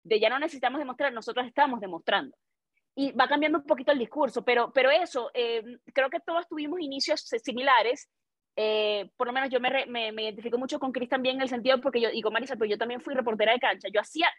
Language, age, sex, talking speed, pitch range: Spanish, 20-39, female, 230 wpm, 220-285 Hz